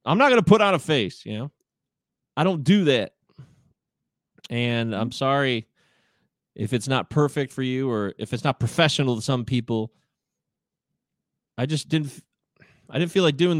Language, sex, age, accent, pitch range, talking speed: English, male, 30-49, American, 125-170 Hz, 170 wpm